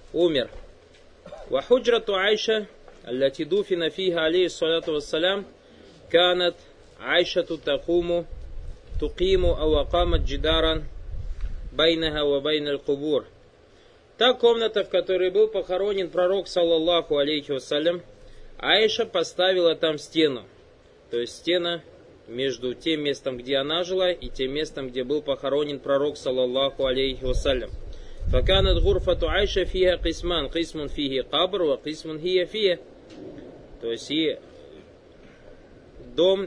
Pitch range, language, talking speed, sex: 145-185 Hz, Russian, 60 wpm, male